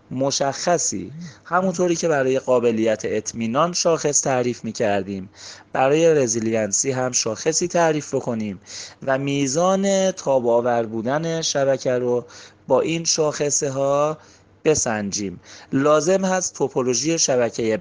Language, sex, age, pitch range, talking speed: Persian, male, 30-49, 110-160 Hz, 100 wpm